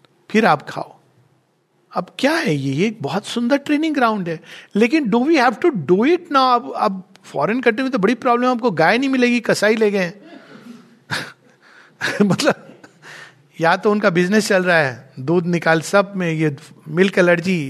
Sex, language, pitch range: male, Hindi, 160-205 Hz